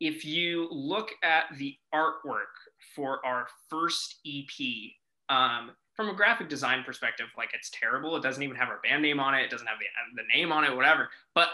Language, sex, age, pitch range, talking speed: English, male, 20-39, 125-165 Hz, 200 wpm